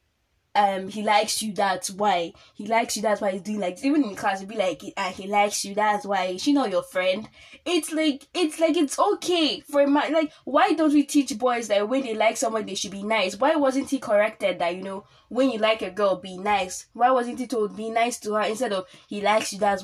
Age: 10-29